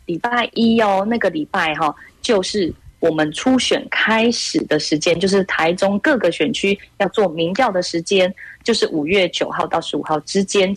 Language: Chinese